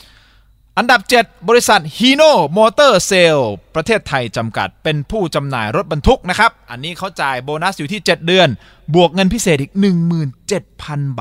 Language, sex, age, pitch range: Thai, male, 20-39, 115-190 Hz